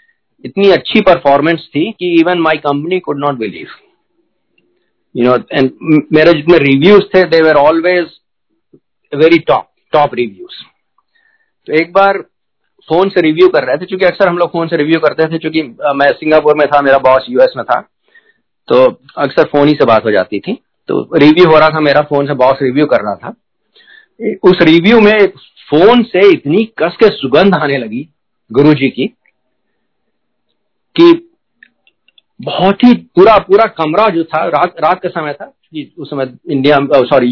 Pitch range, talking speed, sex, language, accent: 145-200 Hz, 125 wpm, male, Hindi, native